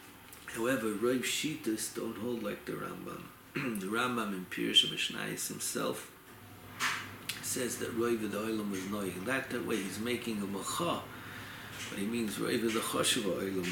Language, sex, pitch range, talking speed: English, male, 95-120 Hz, 135 wpm